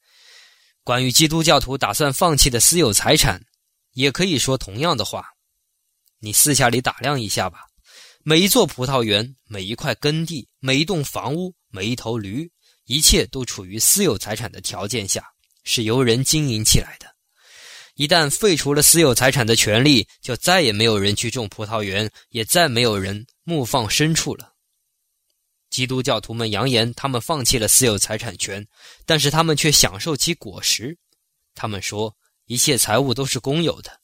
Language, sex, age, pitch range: Chinese, male, 20-39, 110-150 Hz